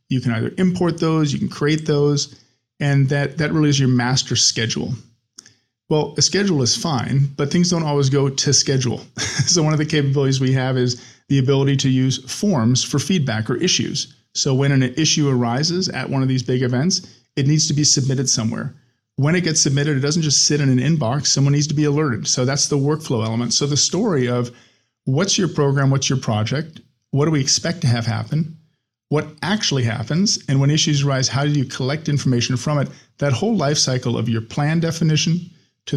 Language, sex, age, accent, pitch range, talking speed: English, male, 40-59, American, 125-150 Hz, 205 wpm